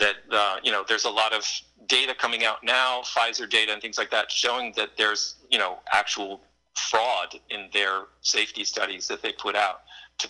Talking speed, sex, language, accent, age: 200 wpm, male, English, American, 40-59